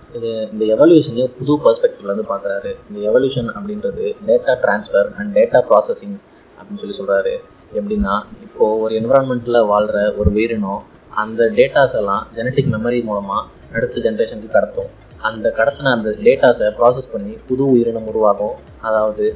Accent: native